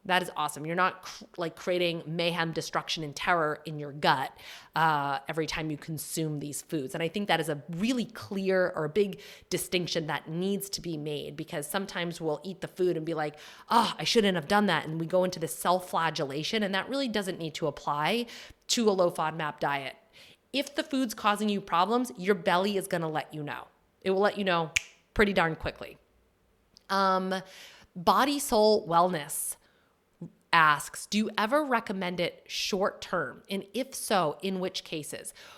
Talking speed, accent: 185 wpm, American